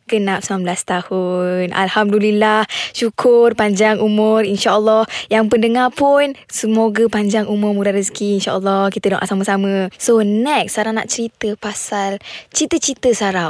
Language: Malay